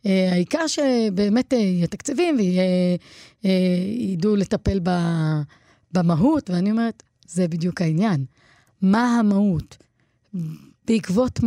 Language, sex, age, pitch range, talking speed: Hebrew, female, 30-49, 175-240 Hz, 95 wpm